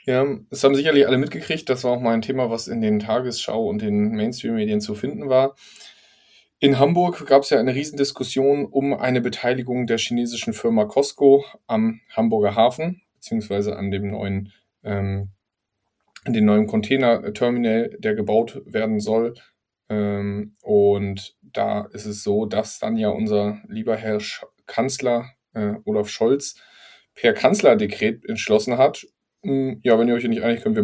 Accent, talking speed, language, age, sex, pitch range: German, 155 wpm, German, 20-39, male, 115-155 Hz